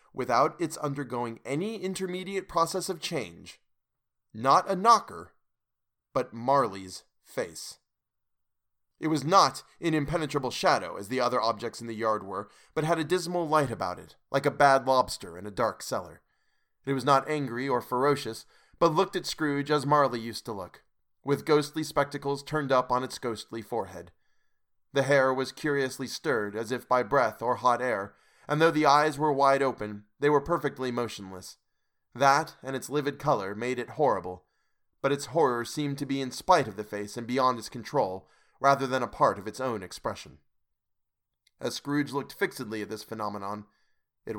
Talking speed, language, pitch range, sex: 175 wpm, English, 115-150 Hz, male